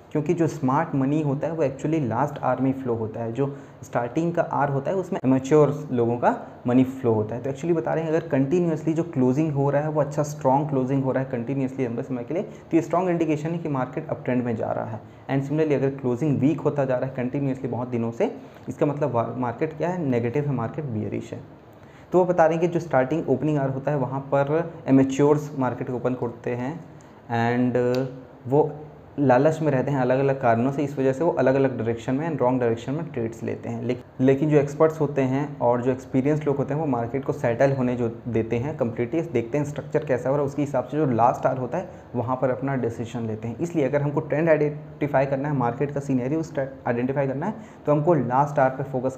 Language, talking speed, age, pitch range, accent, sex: Hindi, 235 wpm, 20-39, 125-150 Hz, native, male